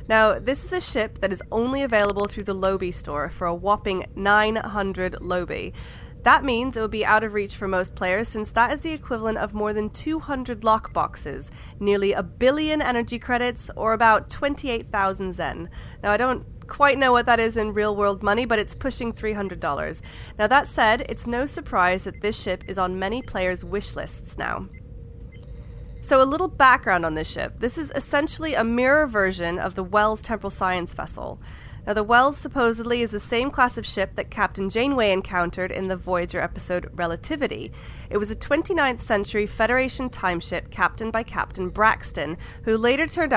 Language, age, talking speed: English, 30-49, 185 wpm